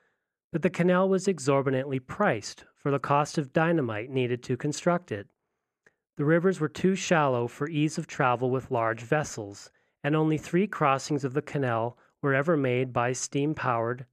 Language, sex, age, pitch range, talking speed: English, male, 40-59, 125-150 Hz, 165 wpm